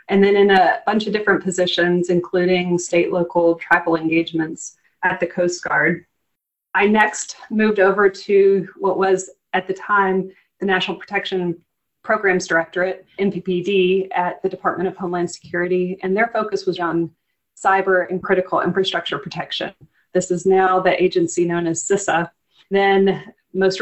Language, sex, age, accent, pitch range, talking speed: English, female, 30-49, American, 180-195 Hz, 145 wpm